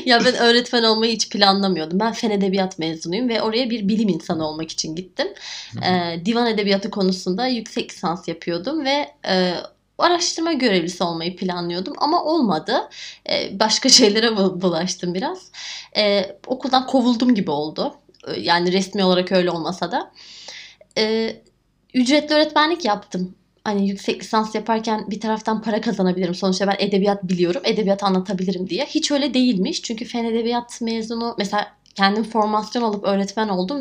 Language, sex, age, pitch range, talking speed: Turkish, female, 20-39, 195-240 Hz, 145 wpm